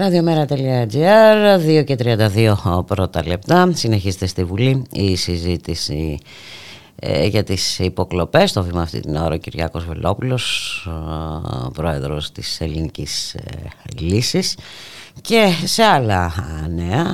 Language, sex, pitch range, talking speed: Greek, female, 85-125 Hz, 95 wpm